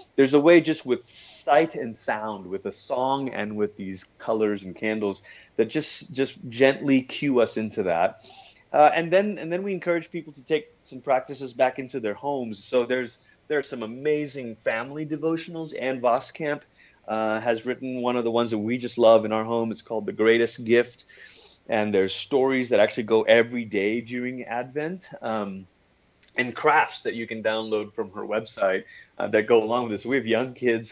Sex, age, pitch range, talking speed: male, 30-49, 110-135 Hz, 190 wpm